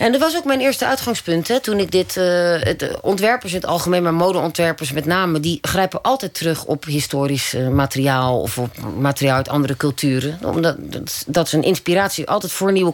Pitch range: 155-185 Hz